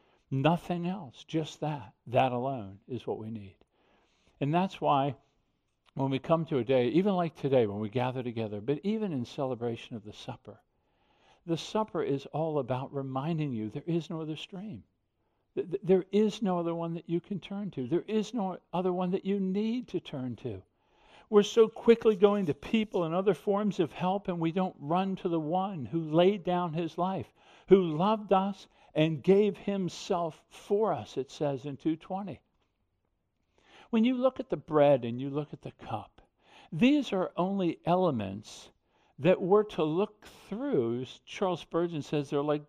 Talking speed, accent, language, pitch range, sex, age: 180 wpm, American, English, 140-195 Hz, male, 60-79